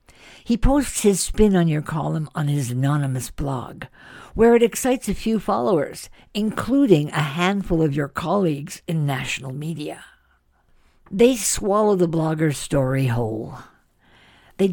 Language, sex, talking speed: English, female, 135 wpm